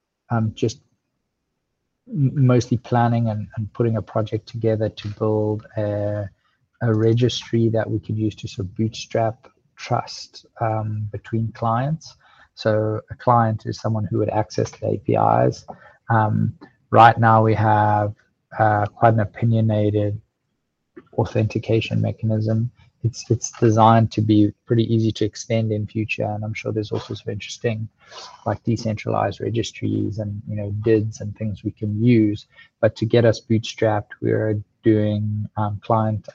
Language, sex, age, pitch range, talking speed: English, male, 20-39, 105-115 Hz, 145 wpm